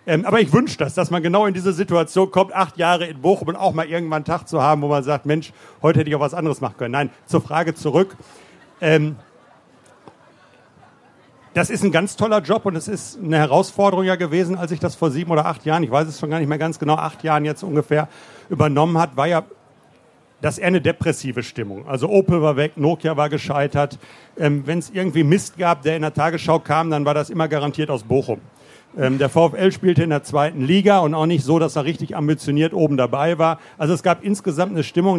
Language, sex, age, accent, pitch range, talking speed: German, male, 40-59, German, 150-175 Hz, 230 wpm